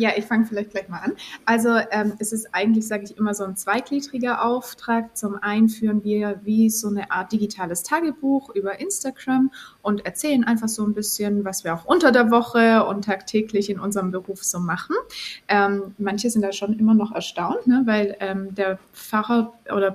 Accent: German